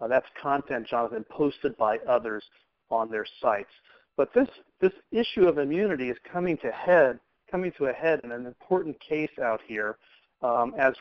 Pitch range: 120-145 Hz